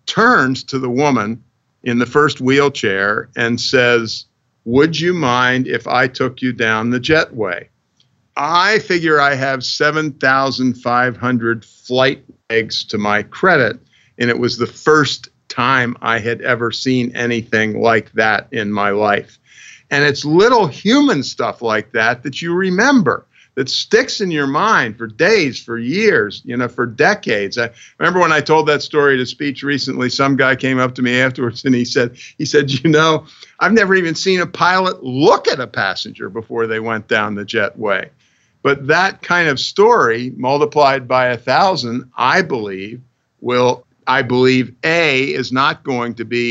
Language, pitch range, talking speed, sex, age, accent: English, 120-145 Hz, 165 wpm, male, 50-69, American